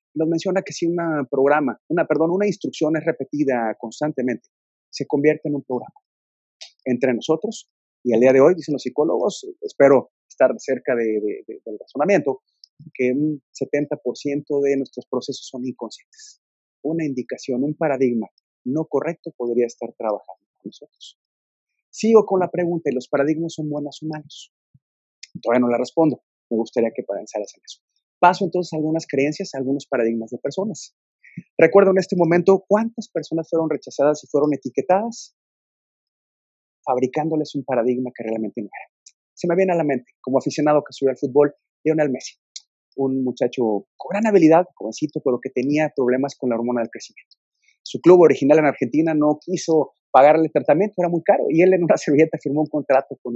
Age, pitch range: 30-49, 125-165 Hz